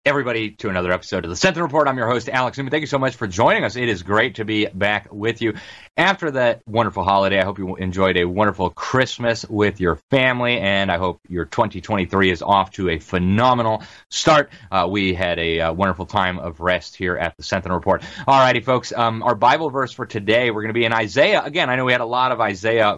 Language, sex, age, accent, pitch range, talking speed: English, male, 30-49, American, 95-125 Hz, 240 wpm